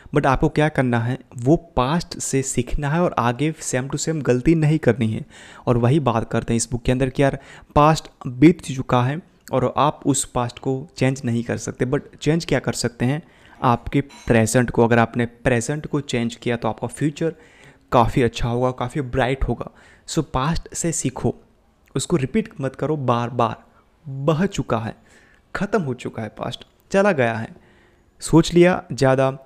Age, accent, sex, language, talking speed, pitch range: 30-49, native, male, Hindi, 185 wpm, 120-150 Hz